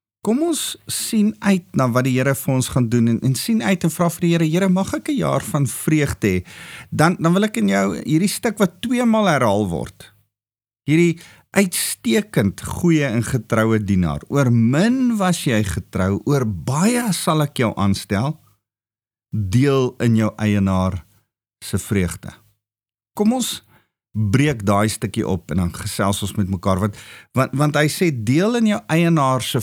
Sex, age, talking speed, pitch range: male, 50-69, 170 wpm, 105-165 Hz